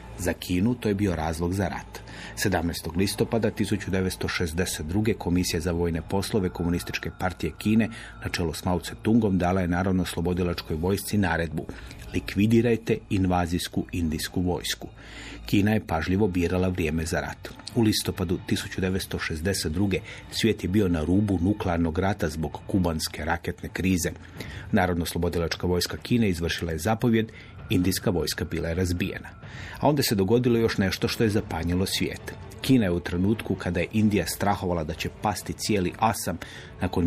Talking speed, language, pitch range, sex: 145 wpm, Croatian, 85-105 Hz, male